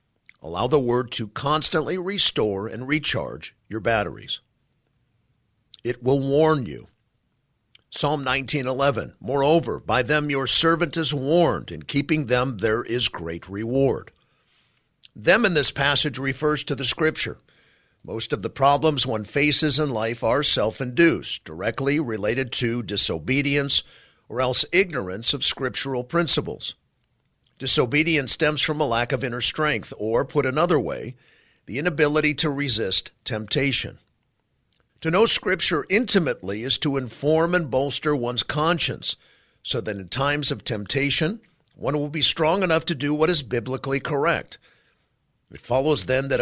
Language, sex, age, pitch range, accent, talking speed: English, male, 50-69, 120-150 Hz, American, 140 wpm